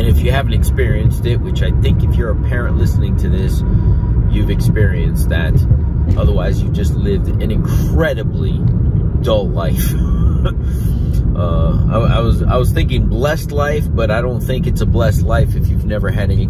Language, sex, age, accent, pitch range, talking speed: English, male, 30-49, American, 95-130 Hz, 180 wpm